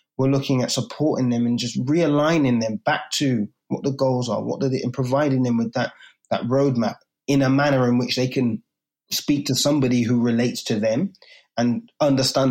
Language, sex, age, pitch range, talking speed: English, male, 20-39, 120-140 Hz, 190 wpm